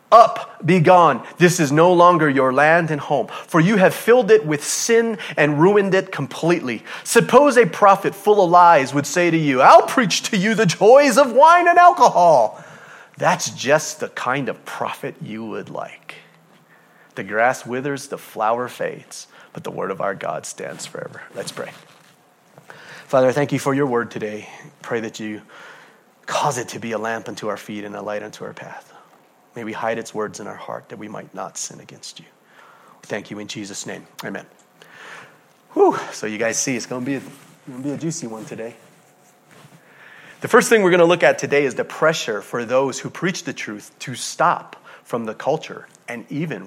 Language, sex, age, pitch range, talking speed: English, male, 30-49, 130-185 Hz, 195 wpm